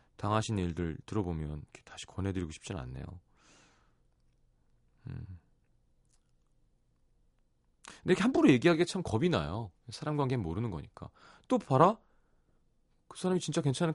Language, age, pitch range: Korean, 30-49, 90-150 Hz